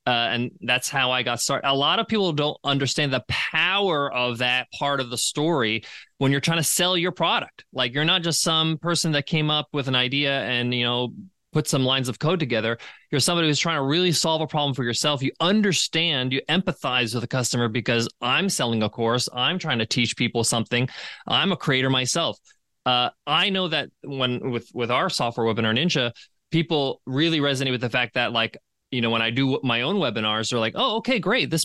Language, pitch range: English, 125-170 Hz